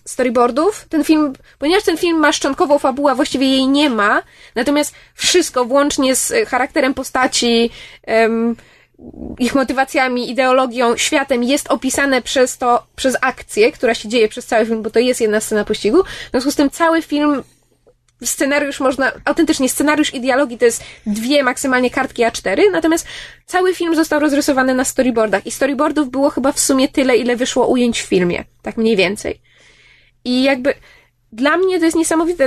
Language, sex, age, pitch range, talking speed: Polish, female, 20-39, 240-305 Hz, 165 wpm